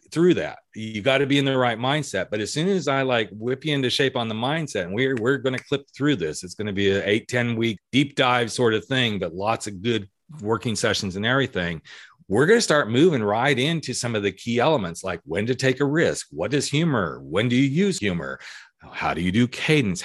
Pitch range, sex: 110-145 Hz, male